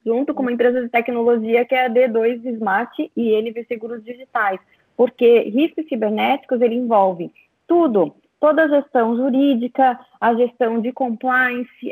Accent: Brazilian